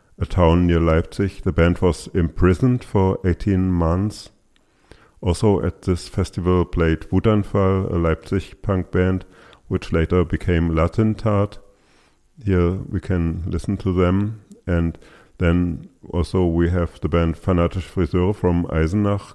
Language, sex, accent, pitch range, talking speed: English, male, German, 85-95 Hz, 130 wpm